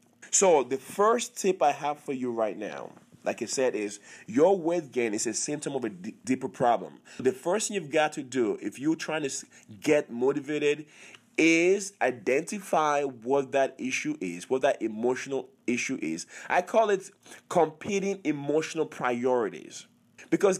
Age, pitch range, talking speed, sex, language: 30-49, 135-190 Hz, 160 wpm, male, English